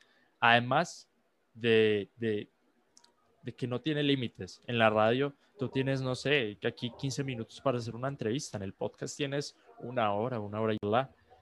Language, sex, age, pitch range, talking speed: Spanish, male, 20-39, 110-140 Hz, 170 wpm